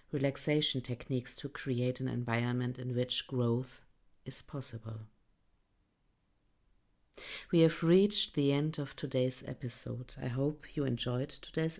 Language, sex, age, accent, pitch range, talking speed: English, female, 50-69, German, 120-150 Hz, 120 wpm